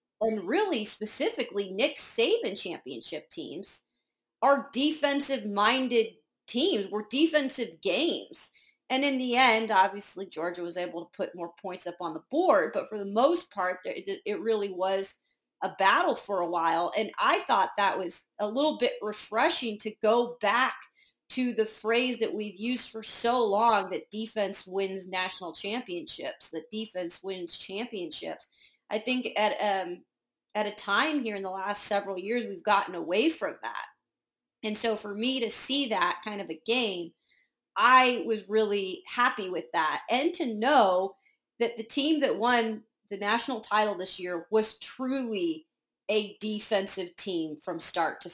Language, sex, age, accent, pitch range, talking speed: English, female, 40-59, American, 185-245 Hz, 160 wpm